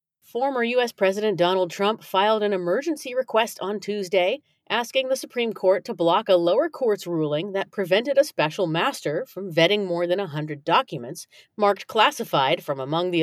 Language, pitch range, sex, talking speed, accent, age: English, 165-215 Hz, female, 170 wpm, American, 40-59